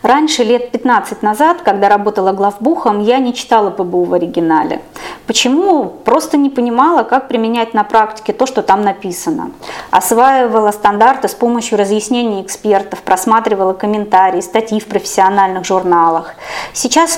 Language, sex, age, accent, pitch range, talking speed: Russian, female, 20-39, native, 200-260 Hz, 135 wpm